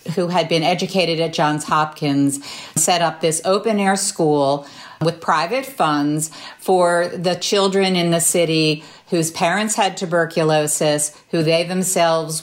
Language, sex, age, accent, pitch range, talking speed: English, female, 50-69, American, 165-195 Hz, 135 wpm